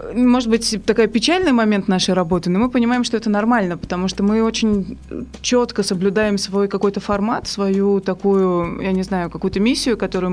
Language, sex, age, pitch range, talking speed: Russian, female, 20-39, 180-210 Hz, 175 wpm